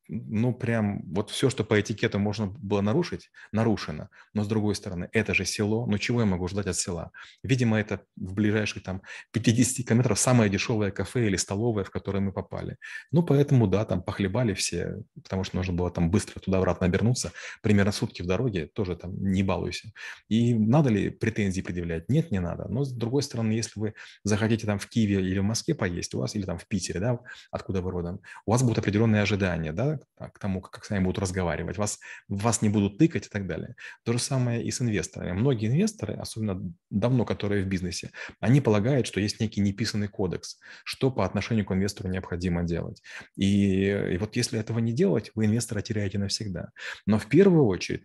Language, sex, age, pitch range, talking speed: Russian, male, 30-49, 95-115 Hz, 200 wpm